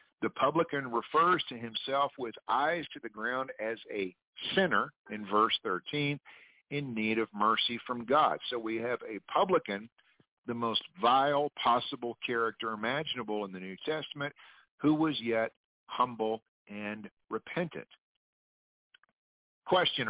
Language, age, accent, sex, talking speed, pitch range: English, 50-69, American, male, 130 wpm, 105-145 Hz